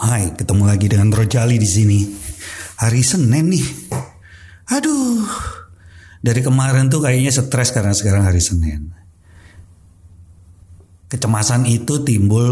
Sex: male